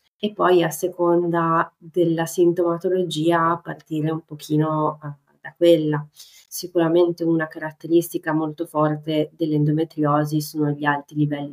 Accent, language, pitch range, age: native, Italian, 150-170 Hz, 30-49